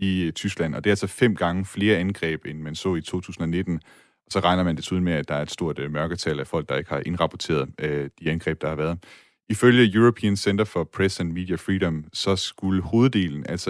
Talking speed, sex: 220 wpm, male